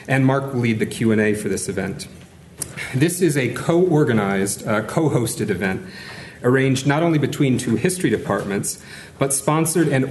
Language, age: English, 40-59